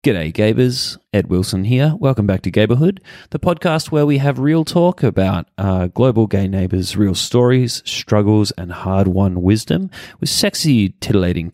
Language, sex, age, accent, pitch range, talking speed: English, male, 20-39, Australian, 95-130 Hz, 155 wpm